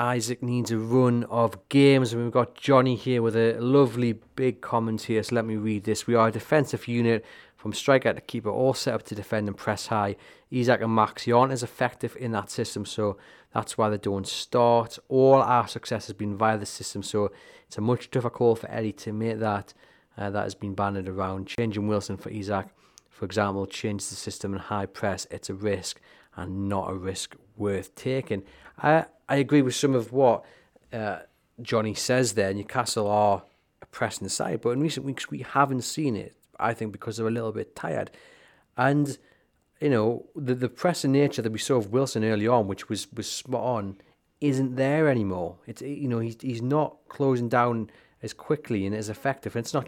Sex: male